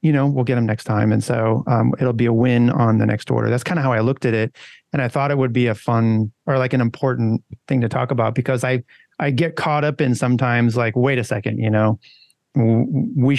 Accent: American